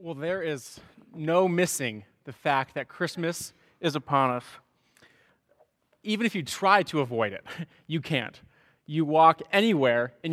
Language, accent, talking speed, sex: English, American, 145 wpm, male